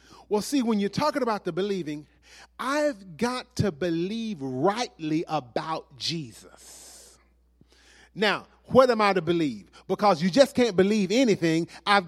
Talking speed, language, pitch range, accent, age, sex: 140 wpm, English, 165-230 Hz, American, 40-59, male